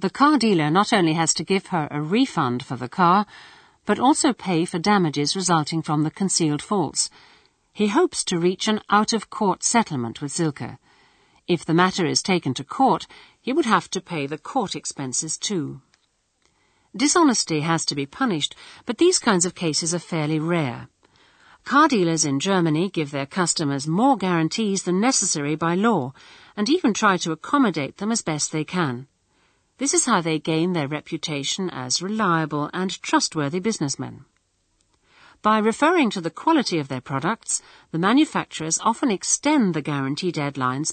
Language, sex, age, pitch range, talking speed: English, female, 50-69, 150-220 Hz, 165 wpm